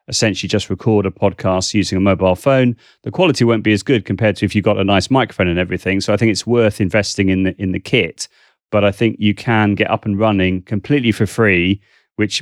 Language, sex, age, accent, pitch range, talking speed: English, male, 30-49, British, 95-110 Hz, 230 wpm